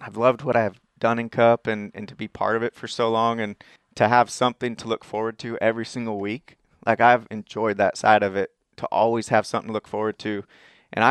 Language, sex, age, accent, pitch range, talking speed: English, male, 20-39, American, 105-120 Hz, 240 wpm